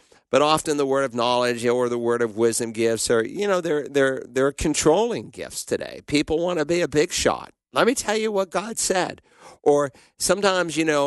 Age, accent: 50-69, American